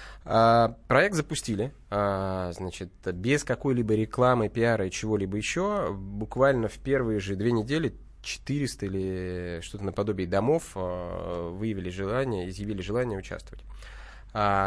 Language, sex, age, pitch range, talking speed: Russian, male, 20-39, 90-120 Hz, 125 wpm